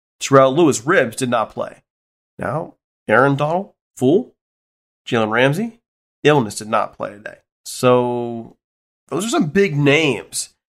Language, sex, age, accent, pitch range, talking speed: English, male, 30-49, American, 110-140 Hz, 130 wpm